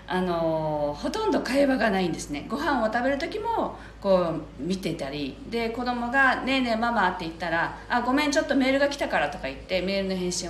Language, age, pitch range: Japanese, 40-59, 170-280 Hz